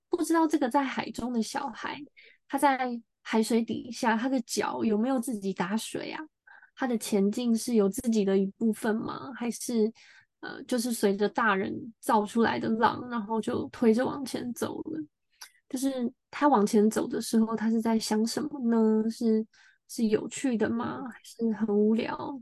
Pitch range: 220-280 Hz